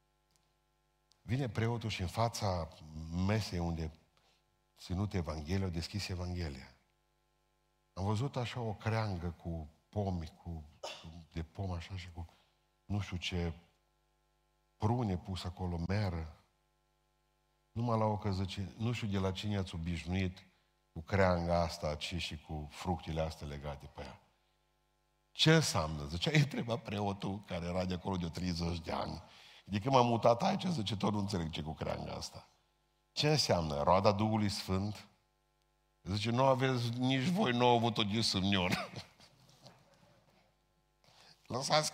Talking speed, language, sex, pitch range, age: 135 wpm, Romanian, male, 90-130 Hz, 50-69